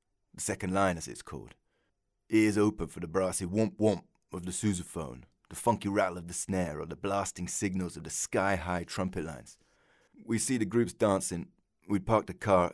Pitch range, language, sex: 90-105 Hz, English, male